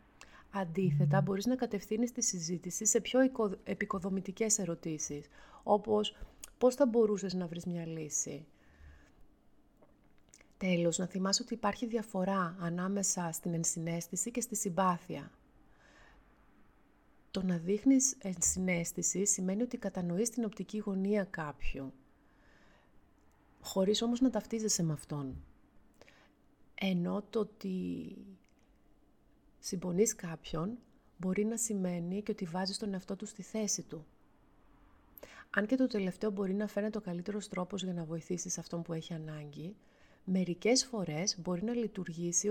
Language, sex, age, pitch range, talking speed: Greek, female, 30-49, 175-215 Hz, 125 wpm